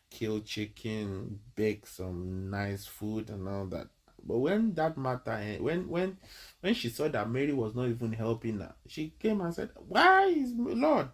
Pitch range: 110-155 Hz